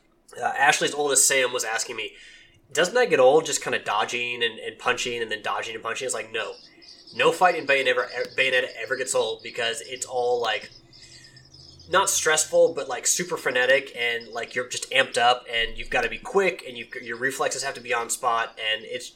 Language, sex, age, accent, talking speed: English, male, 20-39, American, 210 wpm